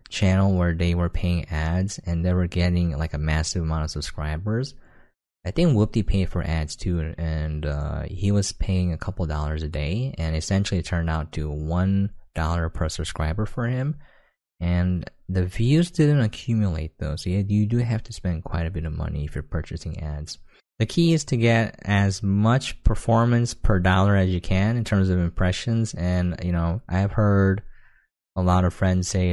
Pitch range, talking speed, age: 85-110 Hz, 190 wpm, 20-39